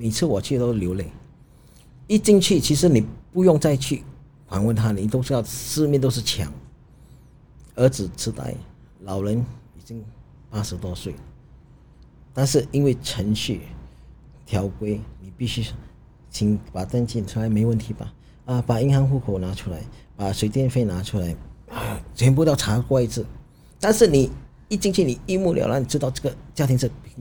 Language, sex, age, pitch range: English, male, 50-69, 100-135 Hz